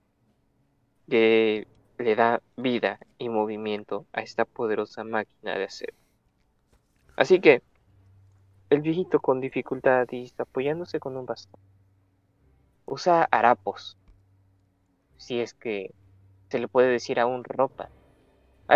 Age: 20-39